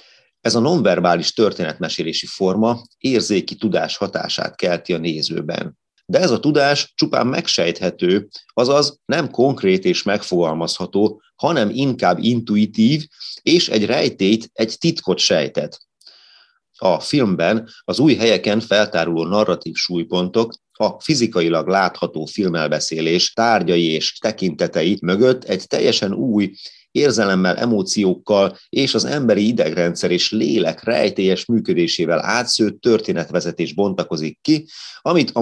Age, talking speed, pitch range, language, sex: 30-49, 110 wpm, 85-125 Hz, Hungarian, male